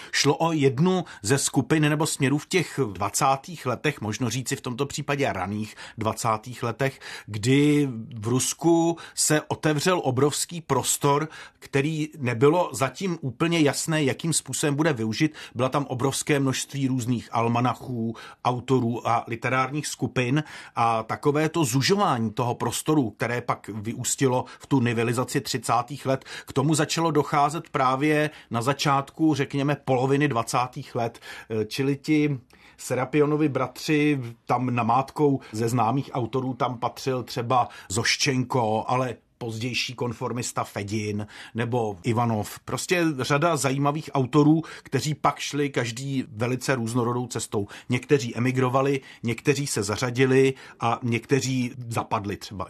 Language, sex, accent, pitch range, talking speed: Czech, male, native, 120-145 Hz, 125 wpm